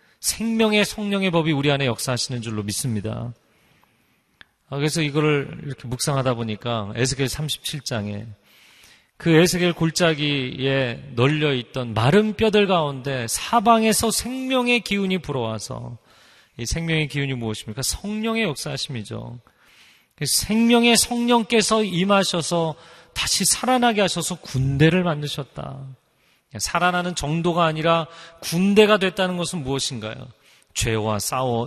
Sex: male